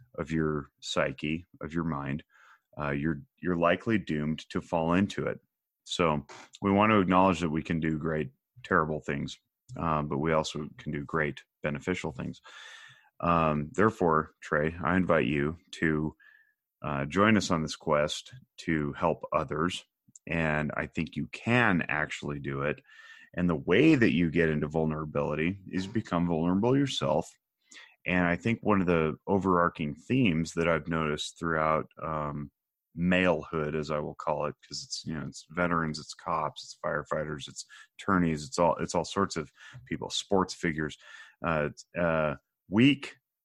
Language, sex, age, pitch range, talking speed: English, male, 30-49, 75-90 Hz, 160 wpm